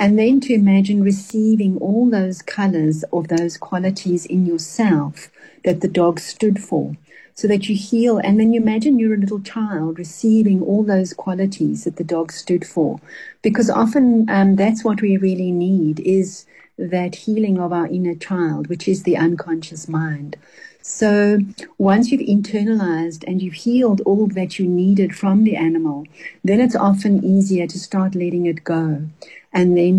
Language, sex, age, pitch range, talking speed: English, female, 60-79, 170-205 Hz, 170 wpm